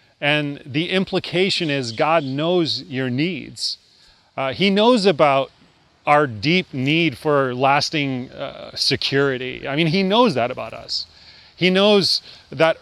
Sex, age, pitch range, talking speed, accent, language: male, 30-49, 140-175 Hz, 135 wpm, American, English